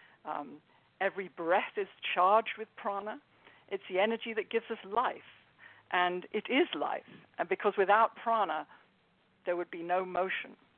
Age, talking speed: 50-69, 150 wpm